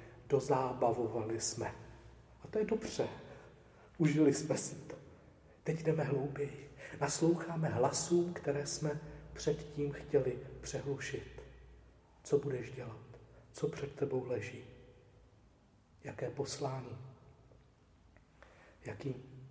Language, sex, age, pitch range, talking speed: Czech, male, 40-59, 120-140 Hz, 95 wpm